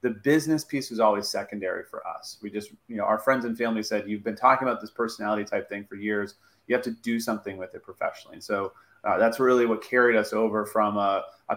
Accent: American